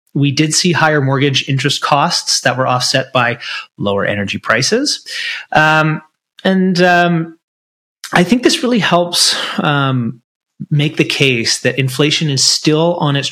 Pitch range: 120-155 Hz